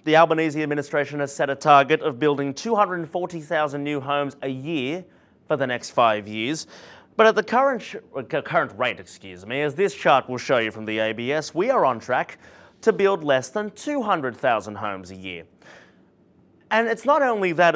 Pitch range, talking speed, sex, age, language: 140-180 Hz, 185 wpm, male, 30-49, English